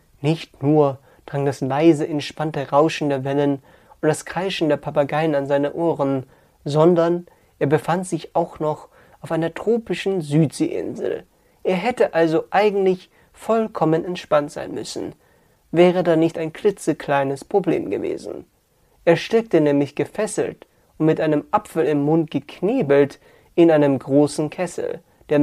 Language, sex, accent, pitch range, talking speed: German, male, German, 145-170 Hz, 135 wpm